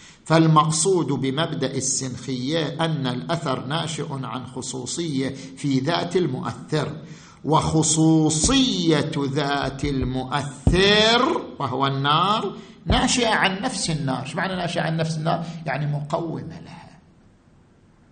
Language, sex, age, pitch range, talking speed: Arabic, male, 50-69, 150-215 Hz, 90 wpm